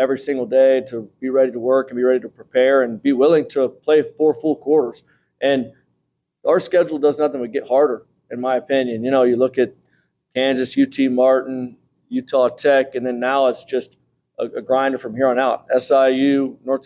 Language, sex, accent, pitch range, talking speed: English, male, American, 125-140 Hz, 200 wpm